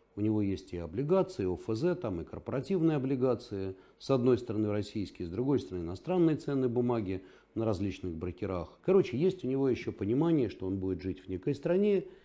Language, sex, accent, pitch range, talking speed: Russian, male, native, 95-150 Hz, 180 wpm